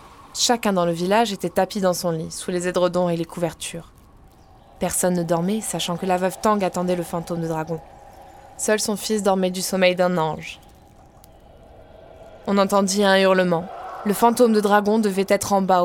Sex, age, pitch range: female, 20-39, 175-215 Hz